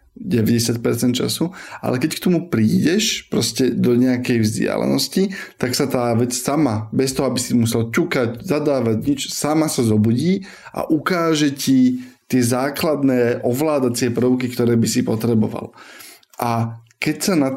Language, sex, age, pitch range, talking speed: Slovak, male, 20-39, 120-140 Hz, 145 wpm